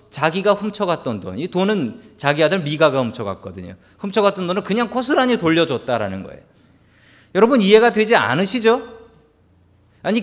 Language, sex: Korean, male